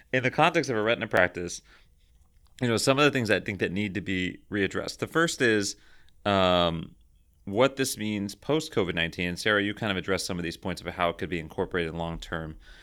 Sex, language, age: male, English, 30-49